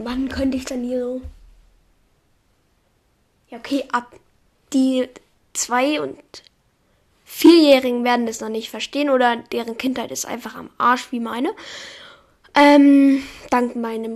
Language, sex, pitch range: German, female, 235-285 Hz